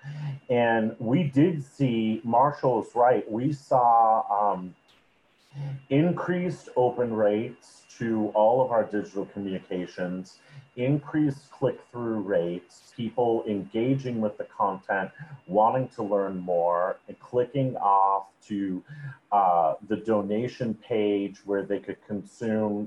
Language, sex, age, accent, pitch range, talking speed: English, male, 40-59, American, 100-135 Hz, 110 wpm